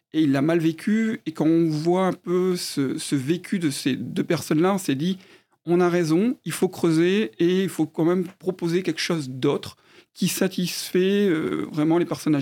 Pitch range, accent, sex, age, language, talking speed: 155-185 Hz, French, male, 40-59, French, 200 wpm